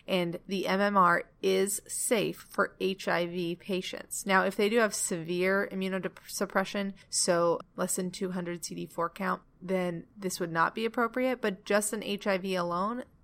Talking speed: 145 wpm